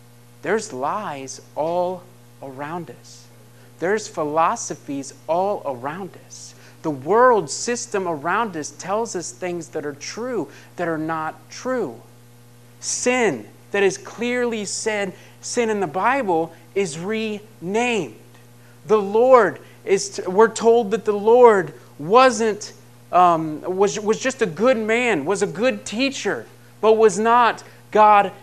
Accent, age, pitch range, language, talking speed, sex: American, 30-49, 135-220 Hz, English, 130 wpm, male